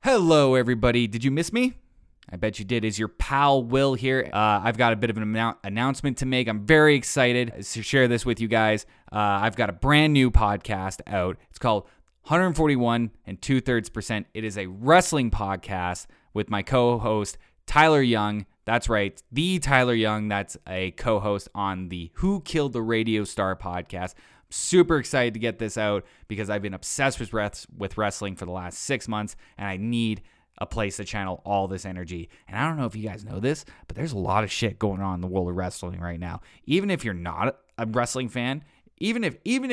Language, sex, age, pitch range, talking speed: English, male, 20-39, 100-135 Hz, 205 wpm